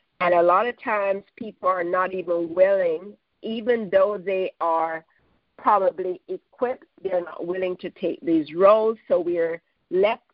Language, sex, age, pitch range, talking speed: English, female, 50-69, 180-260 Hz, 150 wpm